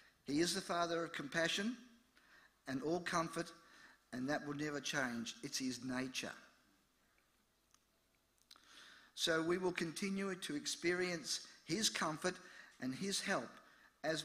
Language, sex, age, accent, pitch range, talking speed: English, male, 50-69, Australian, 140-170 Hz, 120 wpm